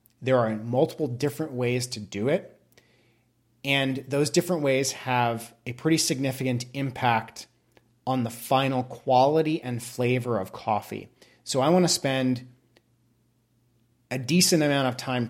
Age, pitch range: 30-49, 115-130 Hz